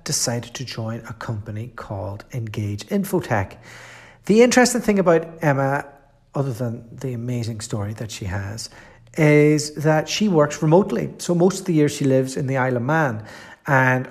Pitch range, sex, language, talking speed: 120-165 Hz, male, English, 165 wpm